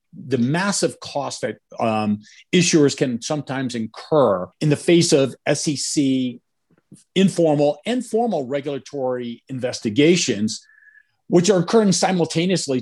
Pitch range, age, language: 125-165 Hz, 50-69, English